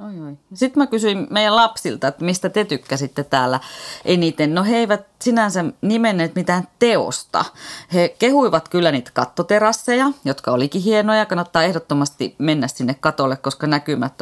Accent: native